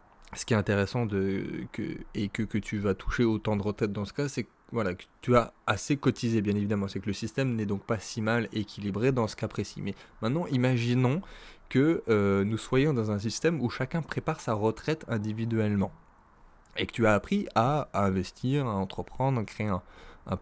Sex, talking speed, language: male, 210 wpm, French